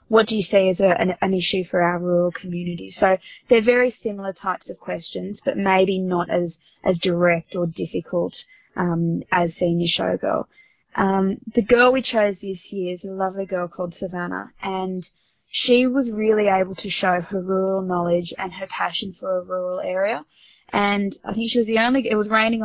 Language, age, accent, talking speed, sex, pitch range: English, 20-39, Australian, 195 wpm, female, 180-215 Hz